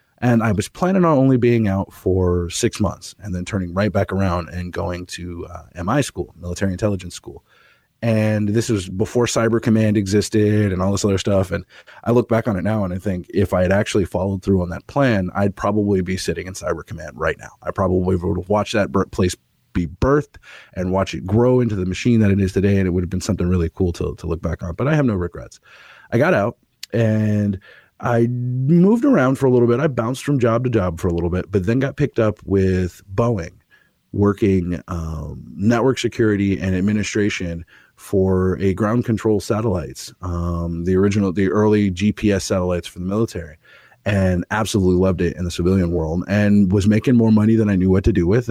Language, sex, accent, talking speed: English, male, American, 215 wpm